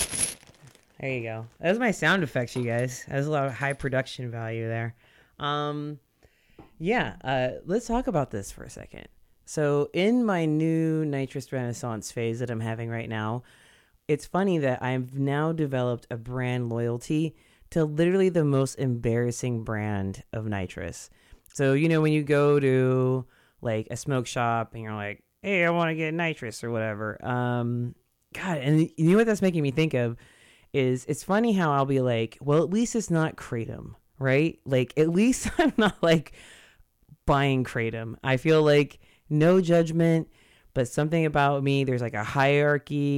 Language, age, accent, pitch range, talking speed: English, 30-49, American, 120-155 Hz, 175 wpm